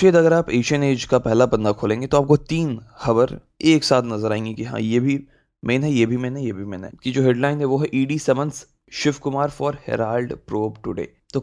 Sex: male